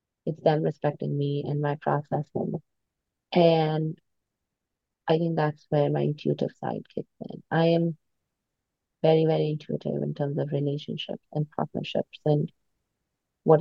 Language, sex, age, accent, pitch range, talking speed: English, female, 30-49, Indian, 140-165 Hz, 130 wpm